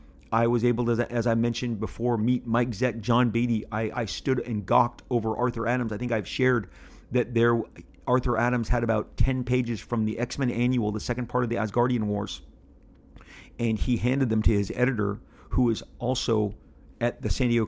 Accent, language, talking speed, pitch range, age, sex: American, English, 195 wpm, 105-120 Hz, 40-59, male